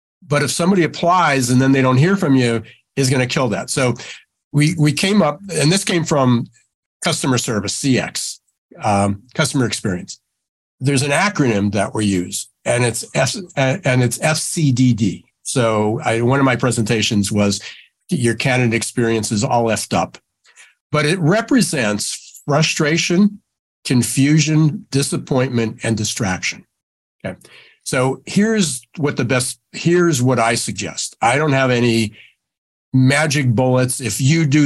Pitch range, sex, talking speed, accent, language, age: 115-150 Hz, male, 145 wpm, American, English, 60-79